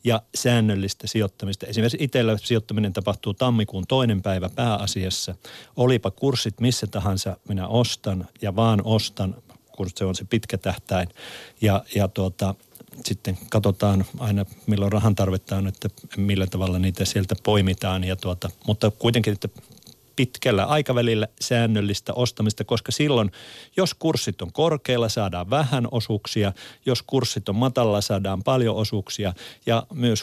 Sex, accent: male, native